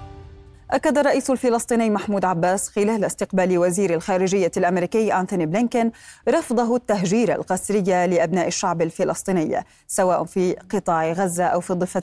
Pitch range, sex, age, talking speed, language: 175-215 Hz, female, 30-49, 125 wpm, Arabic